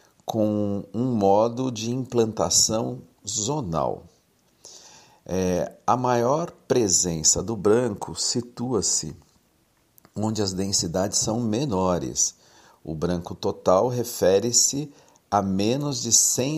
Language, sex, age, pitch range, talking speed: Portuguese, male, 60-79, 95-120 Hz, 90 wpm